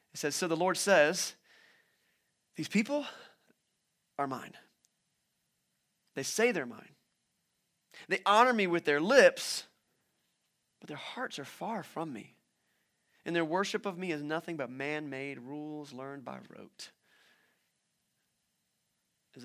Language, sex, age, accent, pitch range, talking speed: English, male, 30-49, American, 140-200 Hz, 130 wpm